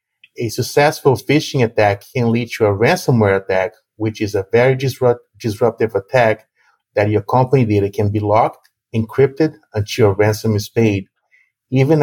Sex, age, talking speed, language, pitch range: male, 30-49, 150 wpm, English, 105-125 Hz